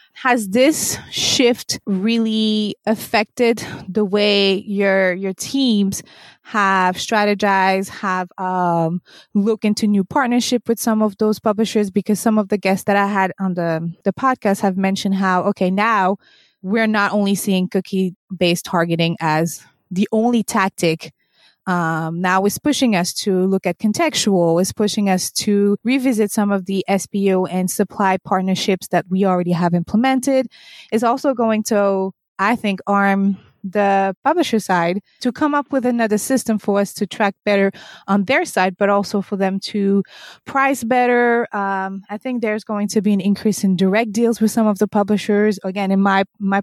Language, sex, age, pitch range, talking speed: English, female, 20-39, 190-220 Hz, 165 wpm